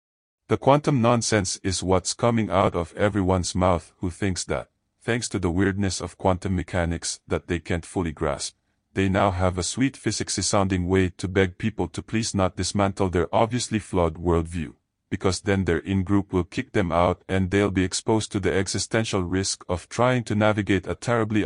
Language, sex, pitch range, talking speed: English, male, 85-105 Hz, 185 wpm